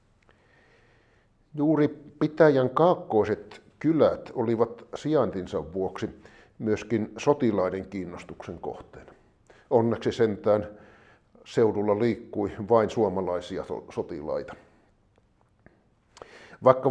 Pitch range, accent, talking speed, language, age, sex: 105-125 Hz, native, 65 wpm, Finnish, 50-69, male